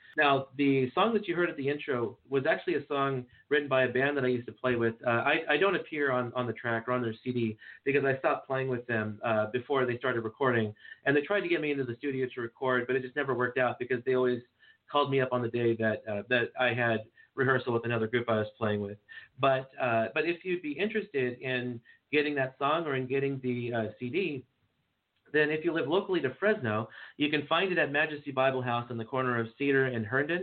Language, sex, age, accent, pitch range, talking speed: English, male, 40-59, American, 120-140 Hz, 245 wpm